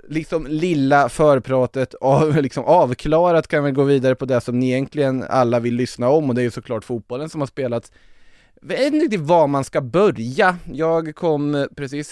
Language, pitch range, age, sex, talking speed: Swedish, 115-145 Hz, 20-39, male, 185 wpm